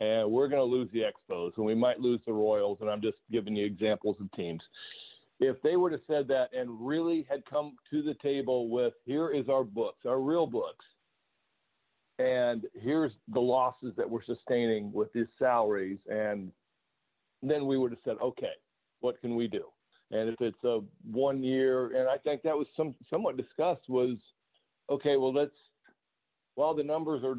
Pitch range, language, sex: 110-130 Hz, English, male